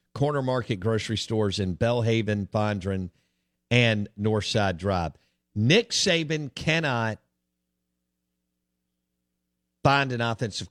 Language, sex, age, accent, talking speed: English, male, 50-69, American, 90 wpm